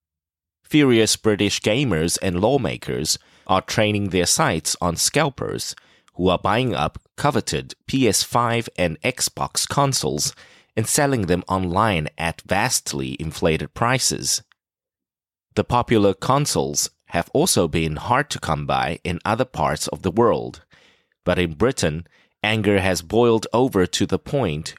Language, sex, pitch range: English, male, 80-110 Hz